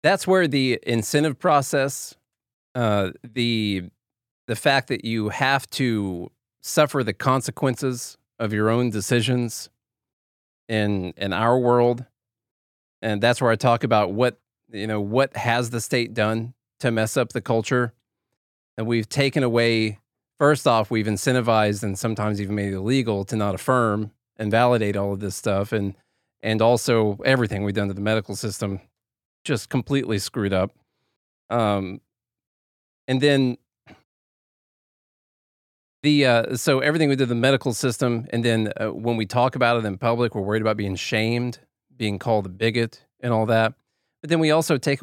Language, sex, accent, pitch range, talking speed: English, male, American, 105-130 Hz, 160 wpm